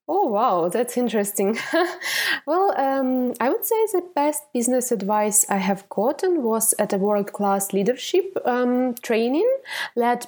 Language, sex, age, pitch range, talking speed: English, female, 20-39, 200-270 Hz, 140 wpm